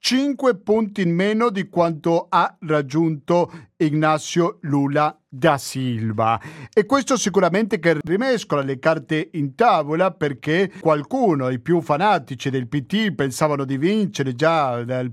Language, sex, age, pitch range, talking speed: Italian, male, 50-69, 150-195 Hz, 130 wpm